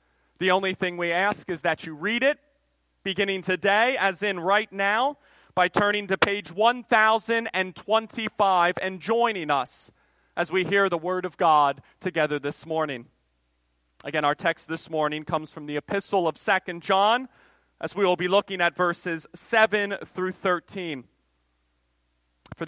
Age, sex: 30-49, male